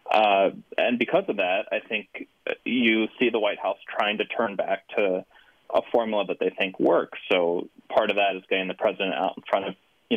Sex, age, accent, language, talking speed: male, 20-39, American, English, 210 wpm